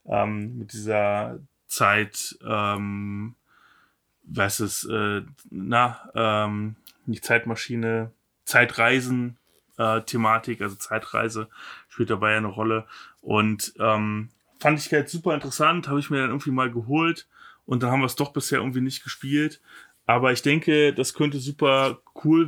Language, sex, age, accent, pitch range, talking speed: German, male, 20-39, German, 115-140 Hz, 140 wpm